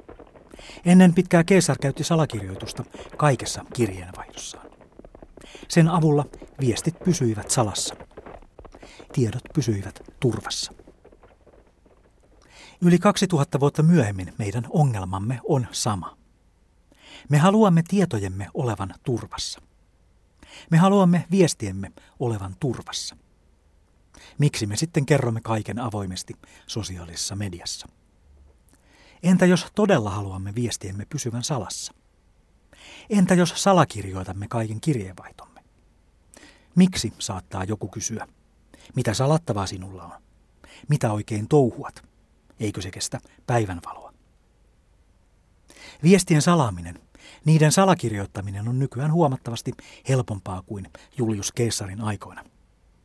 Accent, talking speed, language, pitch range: native, 90 wpm, Finnish, 95-155 Hz